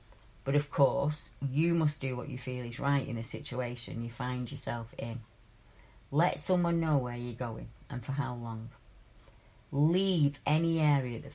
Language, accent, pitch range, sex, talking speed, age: English, British, 125-145 Hz, female, 170 wpm, 30-49